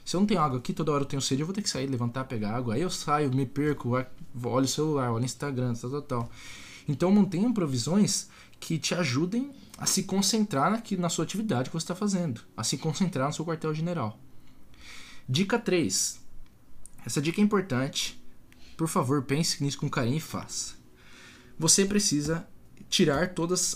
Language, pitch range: Portuguese, 130-180 Hz